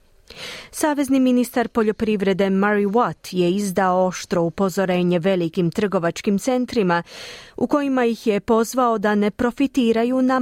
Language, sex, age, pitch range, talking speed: Croatian, female, 30-49, 180-250 Hz, 120 wpm